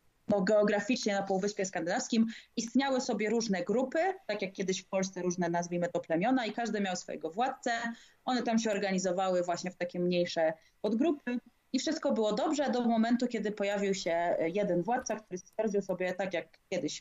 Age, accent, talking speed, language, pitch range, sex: 30-49, native, 170 wpm, Polish, 175-220 Hz, female